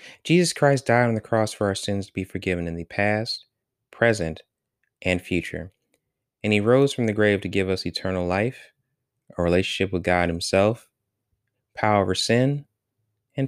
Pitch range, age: 95-120 Hz, 20-39